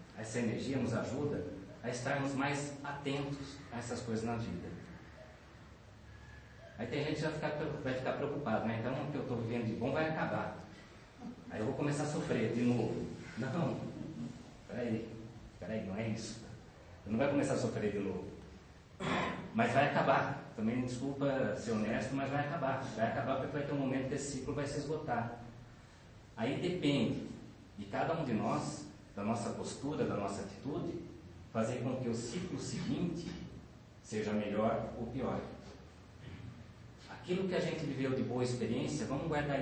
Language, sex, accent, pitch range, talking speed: Portuguese, male, Brazilian, 110-145 Hz, 165 wpm